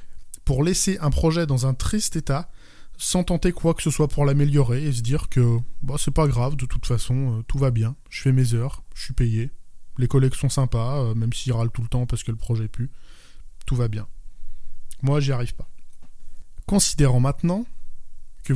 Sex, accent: male, French